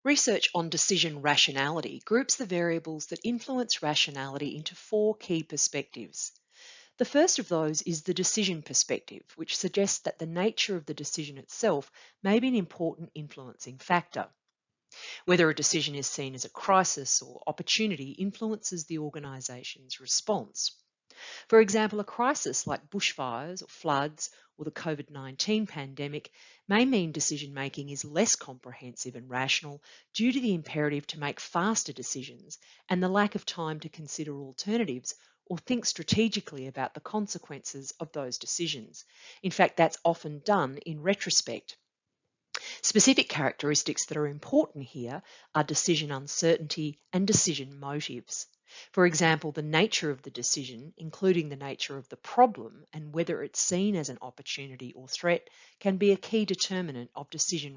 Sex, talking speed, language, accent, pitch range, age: female, 150 wpm, English, Australian, 140-200 Hz, 40-59